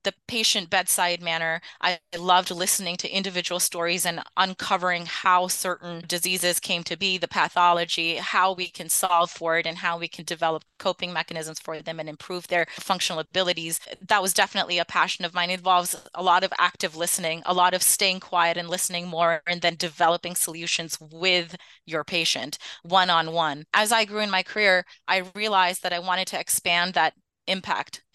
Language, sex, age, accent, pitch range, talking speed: English, female, 30-49, American, 170-190 Hz, 185 wpm